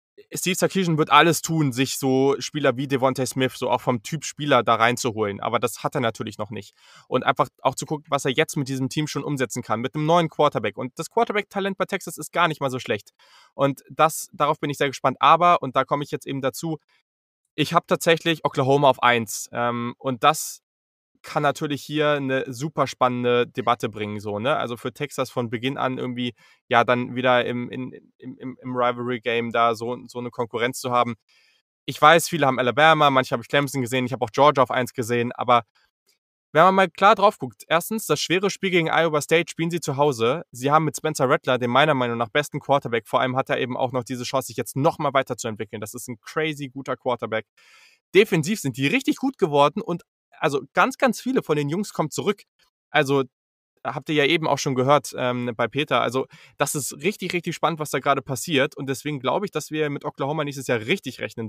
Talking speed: 220 wpm